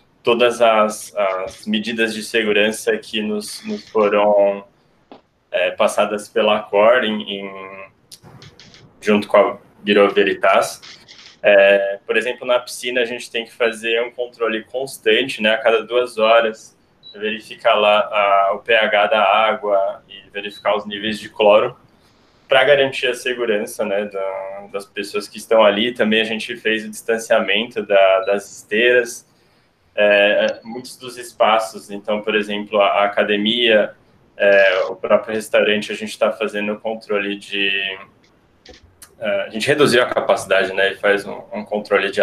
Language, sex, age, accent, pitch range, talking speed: Portuguese, male, 20-39, Brazilian, 100-125 Hz, 150 wpm